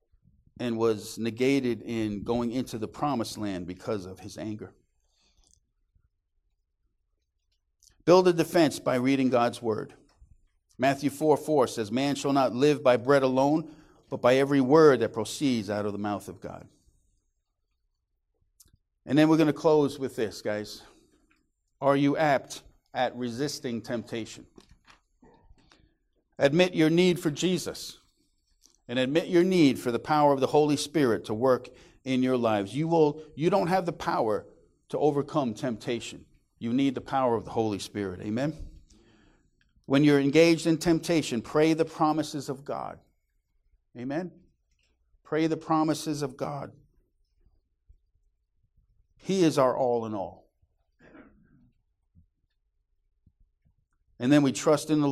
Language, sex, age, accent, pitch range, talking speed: English, male, 50-69, American, 95-145 Hz, 140 wpm